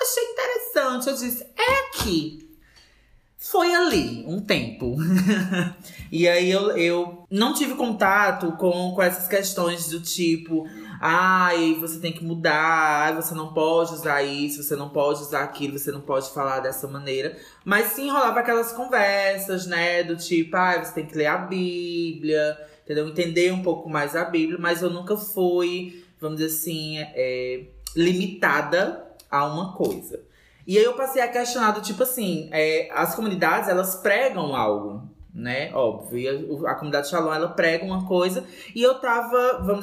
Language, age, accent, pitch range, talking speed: Portuguese, 20-39, Brazilian, 155-205 Hz, 160 wpm